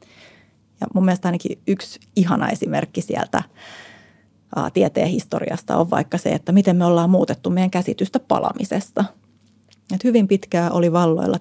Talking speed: 135 wpm